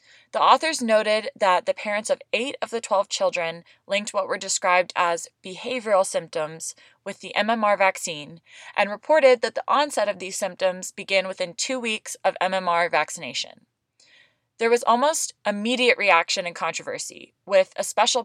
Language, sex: English, female